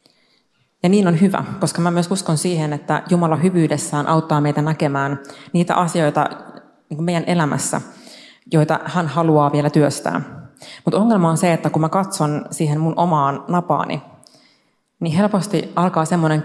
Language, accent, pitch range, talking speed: Finnish, native, 150-175 Hz, 145 wpm